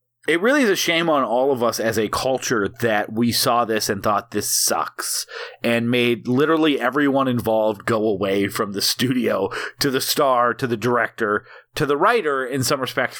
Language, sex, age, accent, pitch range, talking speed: English, male, 30-49, American, 115-150 Hz, 190 wpm